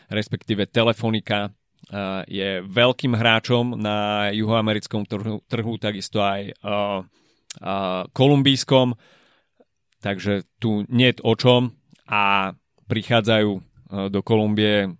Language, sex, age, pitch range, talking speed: Slovak, male, 30-49, 100-120 Hz, 95 wpm